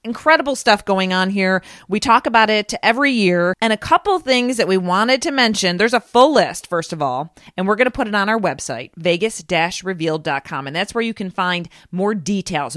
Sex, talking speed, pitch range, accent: female, 210 wpm, 180-235 Hz, American